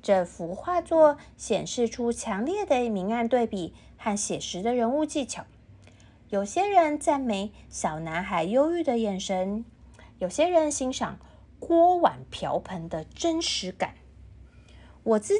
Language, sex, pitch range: Chinese, female, 190-280 Hz